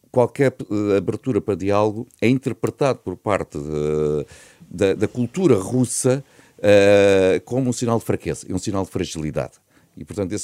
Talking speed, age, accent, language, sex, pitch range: 140 wpm, 50-69, Portuguese, Portuguese, male, 85-120 Hz